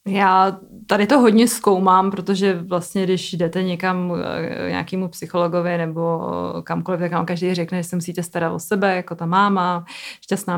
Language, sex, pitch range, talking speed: Czech, female, 170-190 Hz, 160 wpm